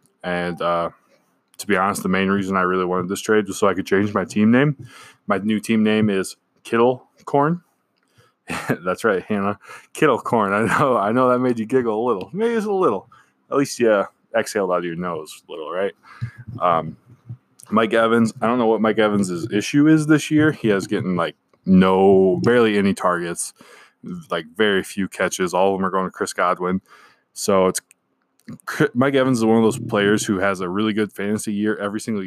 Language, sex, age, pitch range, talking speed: English, male, 20-39, 95-115 Hz, 205 wpm